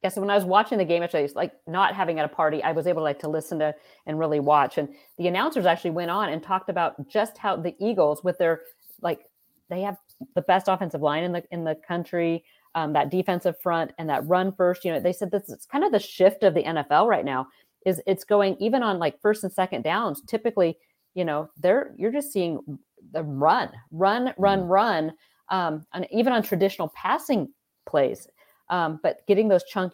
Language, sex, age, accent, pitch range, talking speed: English, female, 40-59, American, 155-190 Hz, 225 wpm